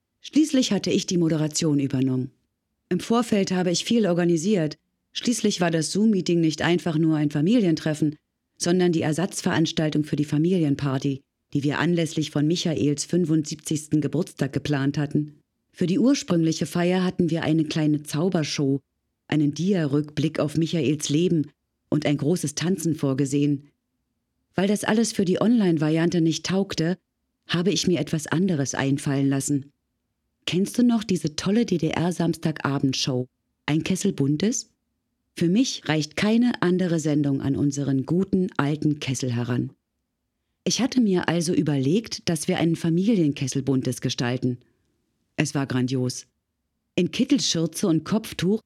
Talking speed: 135 wpm